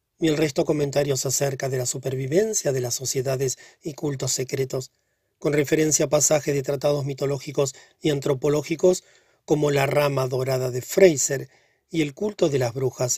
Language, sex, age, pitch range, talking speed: Spanish, male, 40-59, 130-155 Hz, 160 wpm